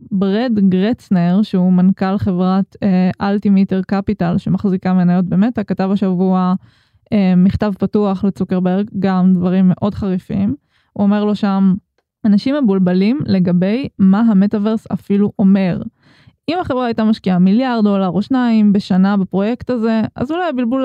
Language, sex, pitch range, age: Hebrew, female, 190-225 Hz, 20-39